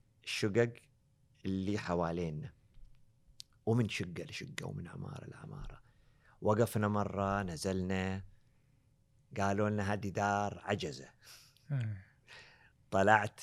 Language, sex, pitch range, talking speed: Arabic, male, 105-150 Hz, 80 wpm